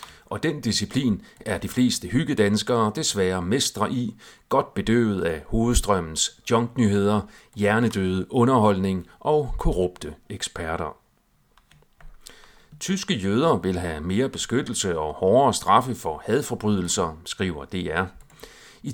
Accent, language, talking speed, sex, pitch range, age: native, Danish, 110 wpm, male, 95-120 Hz, 40-59